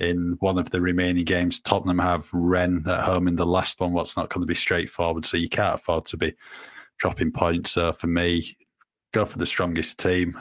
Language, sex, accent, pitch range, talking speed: English, male, British, 90-95 Hz, 225 wpm